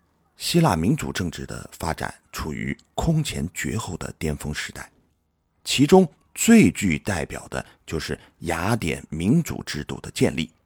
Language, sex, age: Chinese, male, 50-69